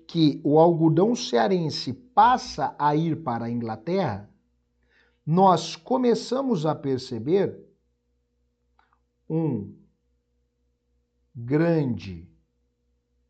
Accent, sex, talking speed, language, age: Brazilian, male, 70 wpm, Portuguese, 60-79